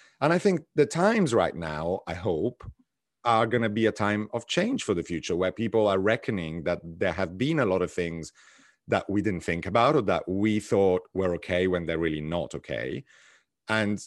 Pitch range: 85-115 Hz